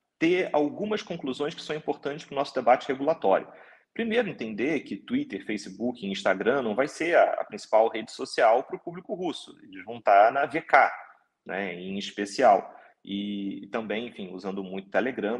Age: 30-49